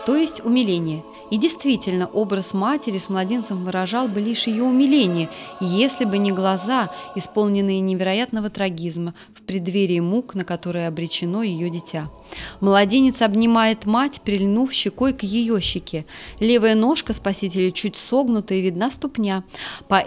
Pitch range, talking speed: 185-225 Hz, 140 wpm